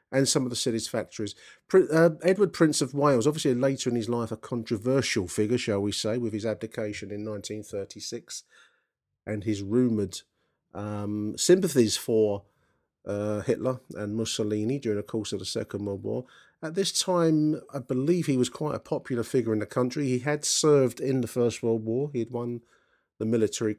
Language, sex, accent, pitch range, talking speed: English, male, British, 100-125 Hz, 180 wpm